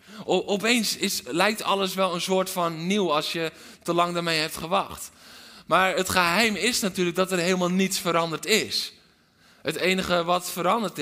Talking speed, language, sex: 170 wpm, Dutch, male